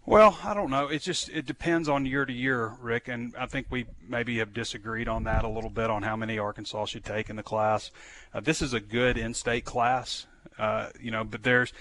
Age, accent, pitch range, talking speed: 30-49, American, 105-120 Hz, 230 wpm